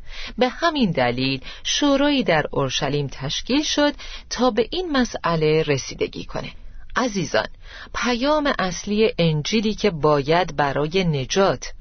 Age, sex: 40-59, female